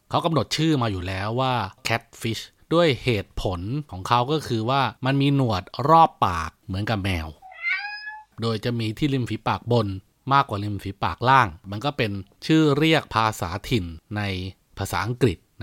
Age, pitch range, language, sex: 20-39, 105-140 Hz, Thai, male